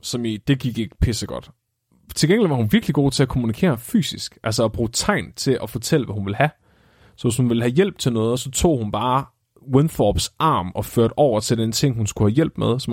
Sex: male